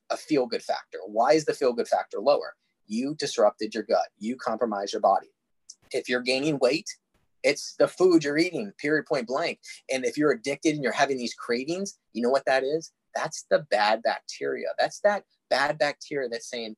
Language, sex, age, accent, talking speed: English, male, 30-49, American, 190 wpm